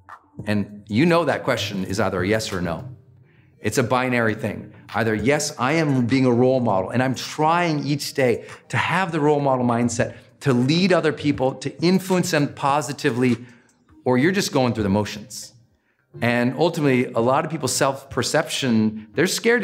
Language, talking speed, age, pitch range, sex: English, 175 wpm, 40-59, 125-180 Hz, male